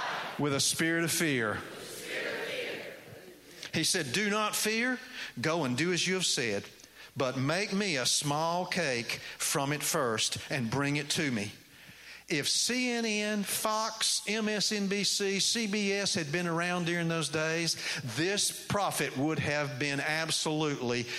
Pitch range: 145-215 Hz